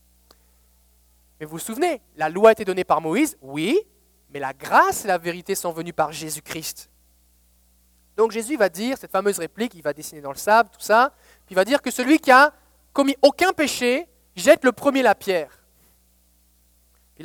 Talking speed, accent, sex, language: 190 wpm, French, male, French